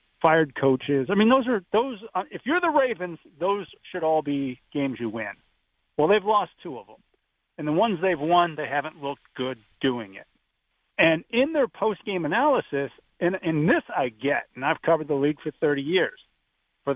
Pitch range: 140-190 Hz